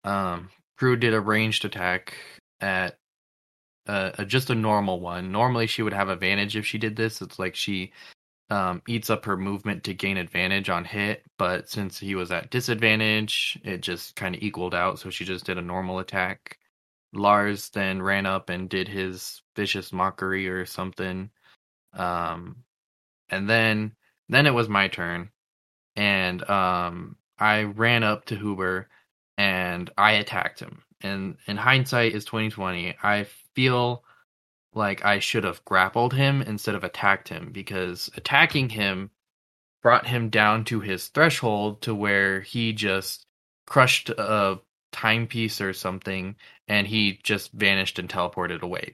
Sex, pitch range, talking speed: male, 95-110 Hz, 155 wpm